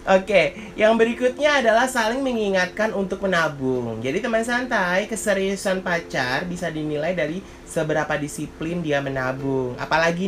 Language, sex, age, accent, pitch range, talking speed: Indonesian, male, 30-49, native, 145-195 Hz, 130 wpm